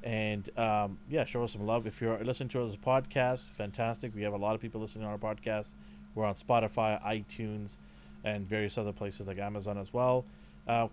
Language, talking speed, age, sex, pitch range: English, 205 wpm, 30-49, male, 105-125 Hz